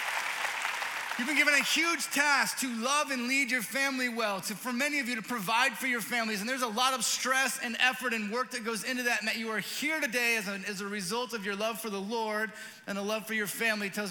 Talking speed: 250 wpm